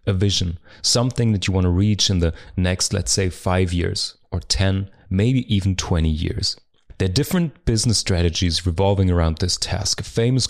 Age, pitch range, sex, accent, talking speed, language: 30-49, 95-115 Hz, male, German, 185 wpm, English